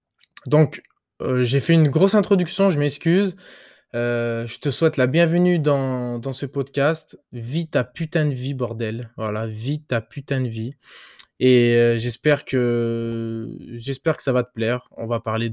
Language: French